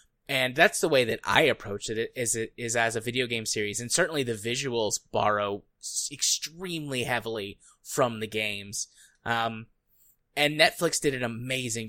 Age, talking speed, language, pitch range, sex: 20-39, 155 wpm, English, 110-135 Hz, male